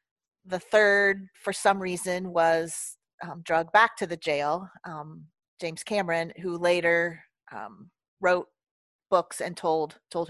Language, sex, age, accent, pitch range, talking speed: English, female, 40-59, American, 160-200 Hz, 135 wpm